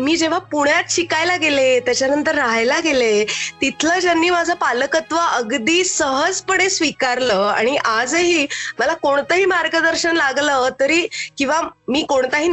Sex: female